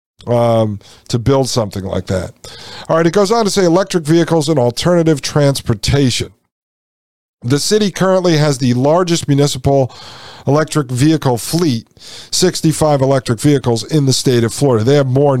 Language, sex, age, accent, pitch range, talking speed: English, male, 50-69, American, 125-165 Hz, 150 wpm